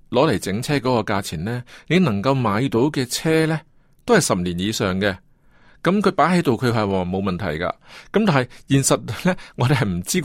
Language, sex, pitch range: Chinese, male, 110-155 Hz